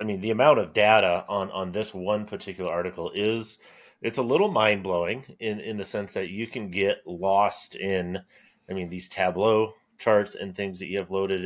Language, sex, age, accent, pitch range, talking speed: English, male, 30-49, American, 95-125 Hz, 200 wpm